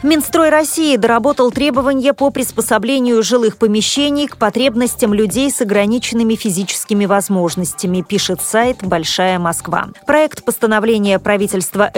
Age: 30-49